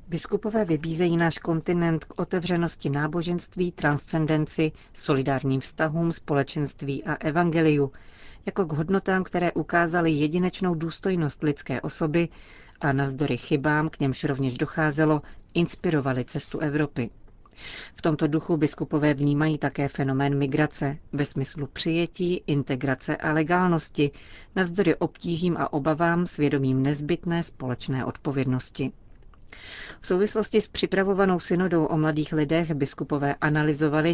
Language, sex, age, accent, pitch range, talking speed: Czech, female, 40-59, native, 140-165 Hz, 110 wpm